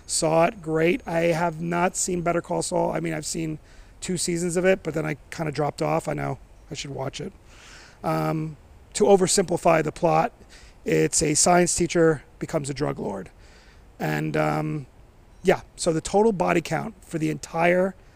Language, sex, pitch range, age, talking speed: English, male, 145-175 Hz, 40-59, 180 wpm